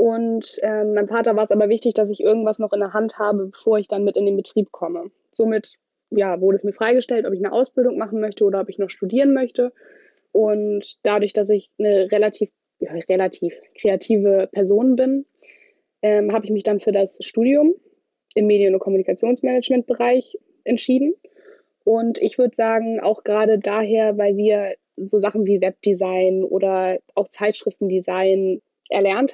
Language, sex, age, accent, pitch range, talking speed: German, female, 20-39, German, 195-230 Hz, 170 wpm